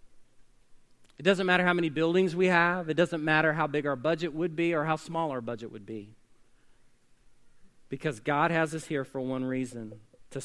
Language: English